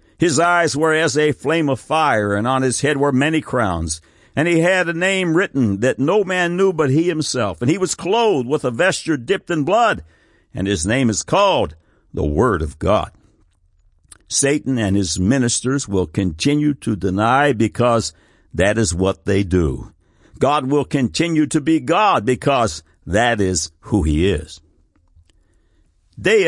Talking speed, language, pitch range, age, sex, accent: 170 wpm, English, 100-150 Hz, 60-79, male, American